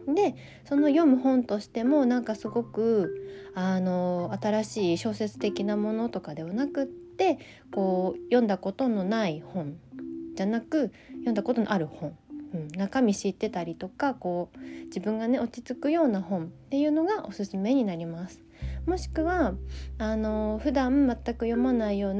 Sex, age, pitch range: female, 20-39, 170-245 Hz